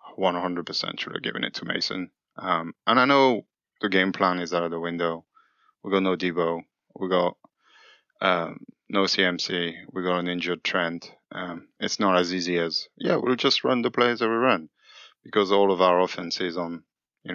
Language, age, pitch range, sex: English, 20-39, 90-100 Hz, male